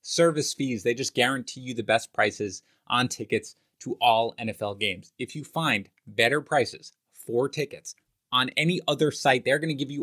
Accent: American